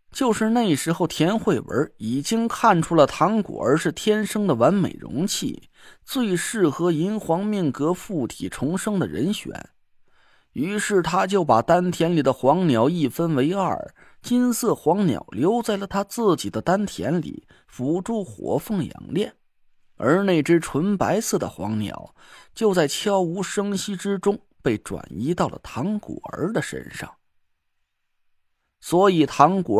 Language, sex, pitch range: Chinese, male, 155-210 Hz